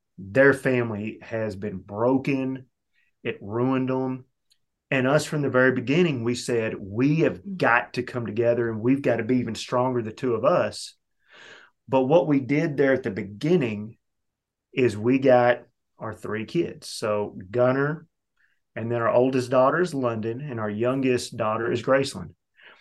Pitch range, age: 115-135 Hz, 30-49